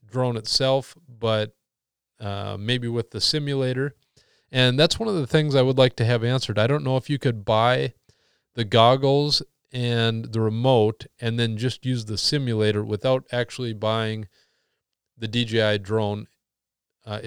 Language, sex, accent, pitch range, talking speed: English, male, American, 110-130 Hz, 155 wpm